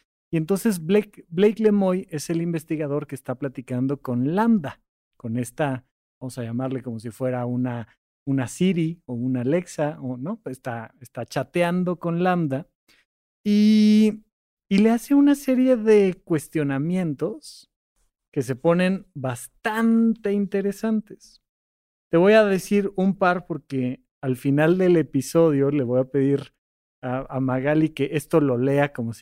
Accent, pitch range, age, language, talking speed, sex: Mexican, 130-185 Hz, 40-59, Spanish, 145 wpm, male